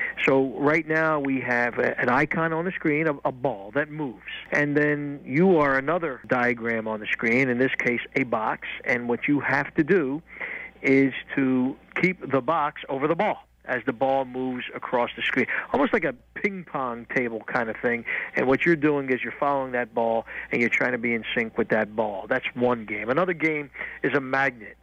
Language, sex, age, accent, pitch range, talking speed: English, male, 50-69, American, 125-150 Hz, 210 wpm